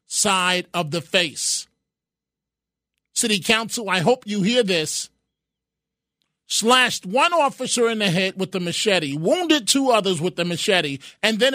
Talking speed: 145 wpm